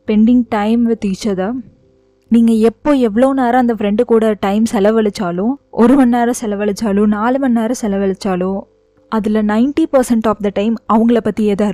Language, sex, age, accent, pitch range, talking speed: Tamil, female, 20-39, native, 205-240 Hz, 155 wpm